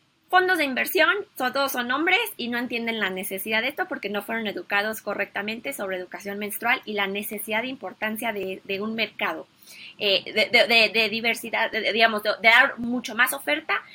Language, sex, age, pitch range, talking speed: Spanish, female, 20-39, 215-295 Hz, 195 wpm